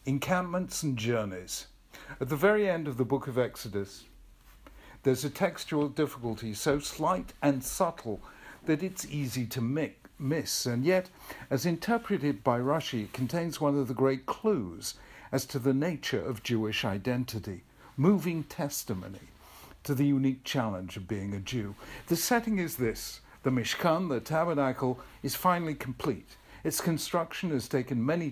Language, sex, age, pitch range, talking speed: English, male, 60-79, 125-160 Hz, 155 wpm